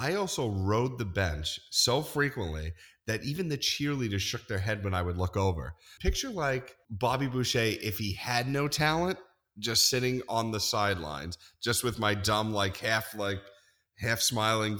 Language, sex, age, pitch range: English, male, 30-49, 95-120 Hz